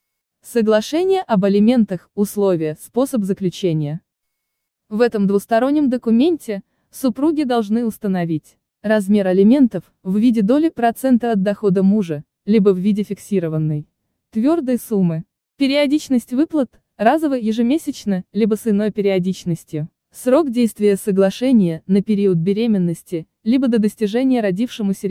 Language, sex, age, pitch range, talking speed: Russian, female, 20-39, 190-245 Hz, 110 wpm